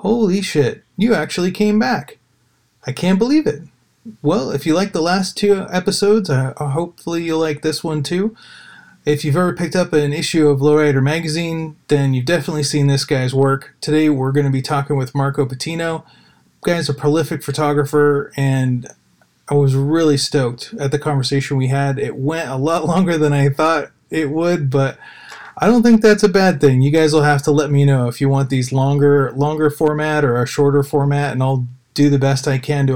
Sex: male